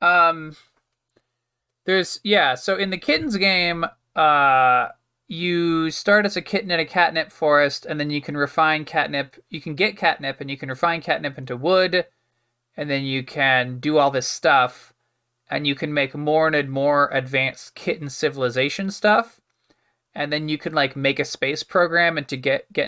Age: 20-39